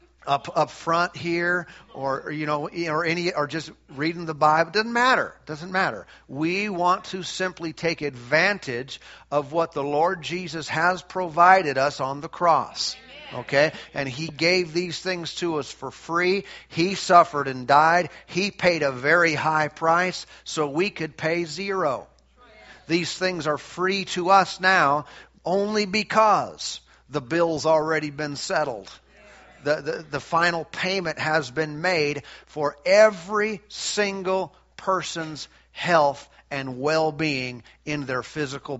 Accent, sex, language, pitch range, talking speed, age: American, male, English, 145-180 Hz, 145 wpm, 50-69